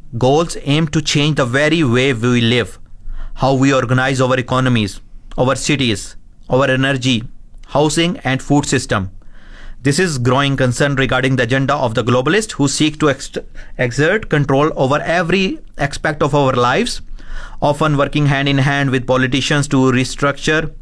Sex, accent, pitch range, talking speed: male, Indian, 125-155 Hz, 150 wpm